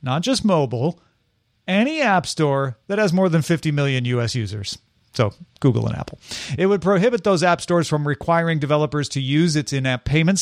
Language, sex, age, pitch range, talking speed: English, male, 40-59, 135-180 Hz, 190 wpm